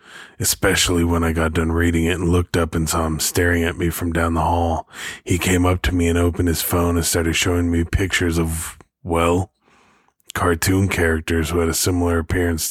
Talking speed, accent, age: 205 wpm, American, 20-39